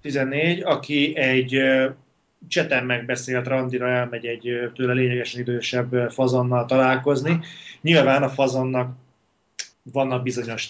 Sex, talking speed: male, 100 wpm